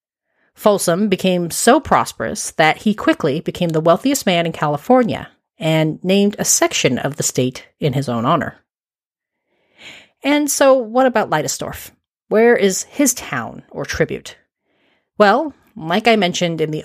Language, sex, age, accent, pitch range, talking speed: English, female, 40-59, American, 145-215 Hz, 145 wpm